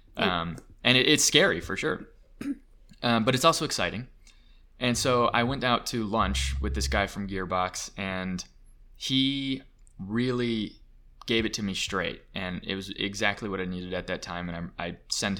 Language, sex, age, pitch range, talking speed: English, male, 20-39, 95-115 Hz, 180 wpm